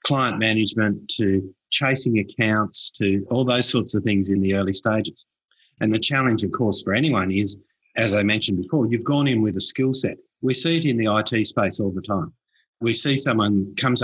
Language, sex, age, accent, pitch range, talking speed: English, male, 50-69, Australian, 100-125 Hz, 205 wpm